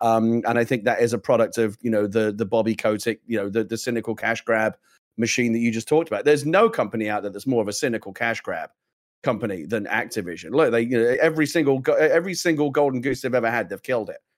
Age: 30-49